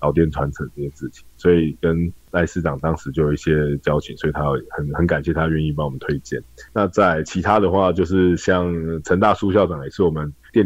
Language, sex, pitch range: Chinese, male, 75-90 Hz